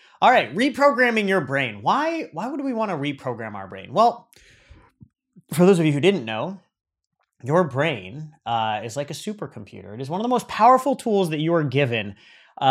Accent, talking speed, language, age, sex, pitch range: American, 195 wpm, English, 30-49, male, 130-185 Hz